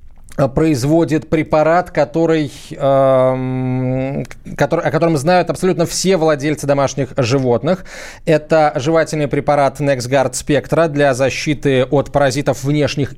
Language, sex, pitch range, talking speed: Russian, male, 140-170 Hz, 95 wpm